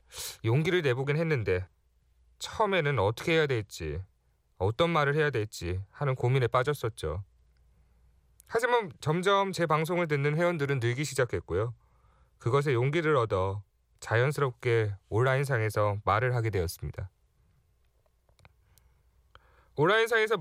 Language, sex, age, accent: Korean, male, 30-49, native